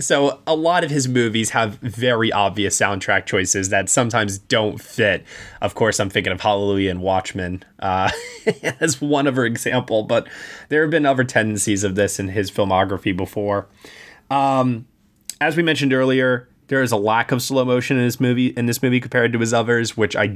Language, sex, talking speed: English, male, 190 wpm